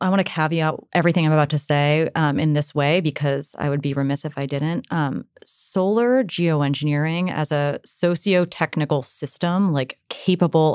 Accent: American